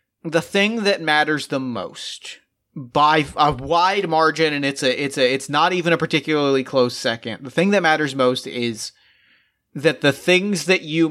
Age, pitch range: 30-49, 135-170 Hz